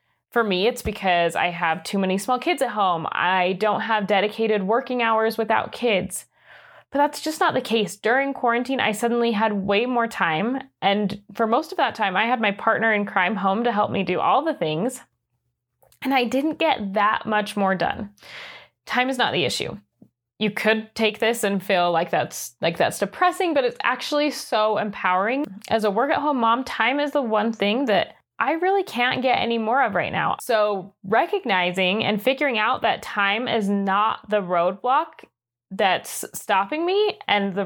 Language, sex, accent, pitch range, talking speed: English, female, American, 195-250 Hz, 190 wpm